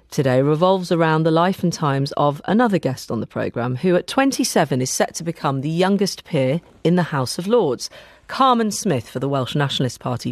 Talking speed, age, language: 205 wpm, 40-59, English